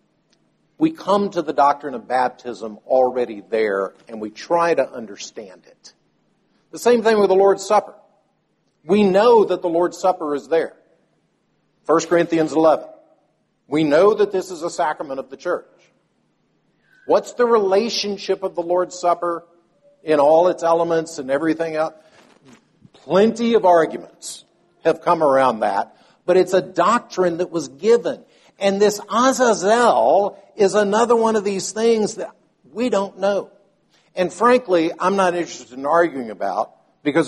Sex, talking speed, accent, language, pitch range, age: male, 150 wpm, American, English, 140-200 Hz, 60-79